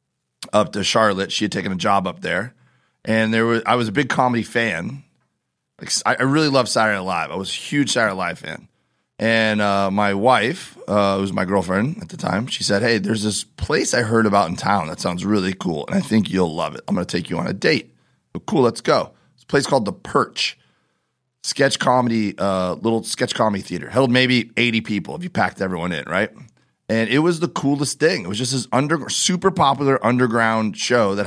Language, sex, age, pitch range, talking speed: English, male, 30-49, 100-125 Hz, 225 wpm